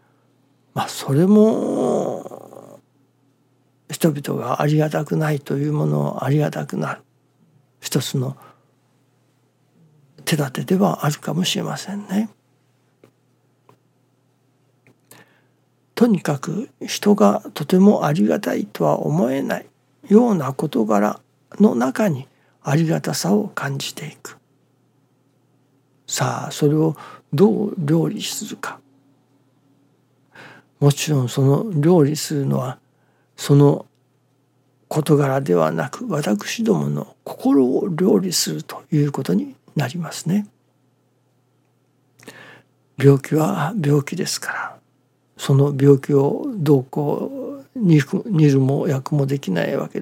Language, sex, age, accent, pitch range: Japanese, male, 60-79, native, 135-170 Hz